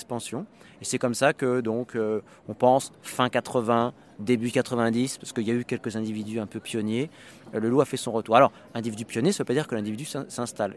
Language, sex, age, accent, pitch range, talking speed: French, male, 30-49, French, 110-140 Hz, 215 wpm